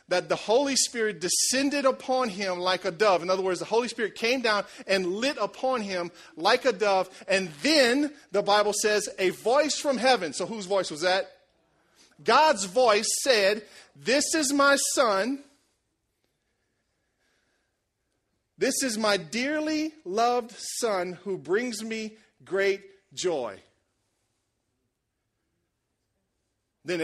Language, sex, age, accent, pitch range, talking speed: English, male, 40-59, American, 170-250 Hz, 130 wpm